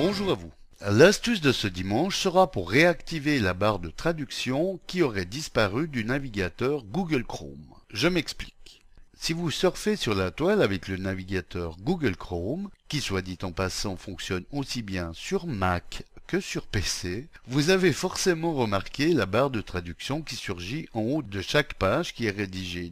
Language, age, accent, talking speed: French, 60-79, French, 170 wpm